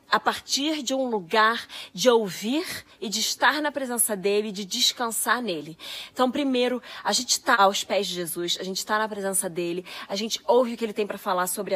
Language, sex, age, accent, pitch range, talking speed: Portuguese, female, 20-39, Brazilian, 210-260 Hz, 210 wpm